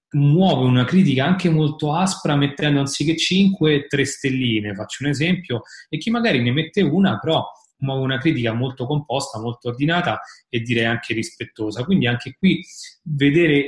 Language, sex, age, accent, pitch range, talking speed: Italian, male, 30-49, native, 115-140 Hz, 160 wpm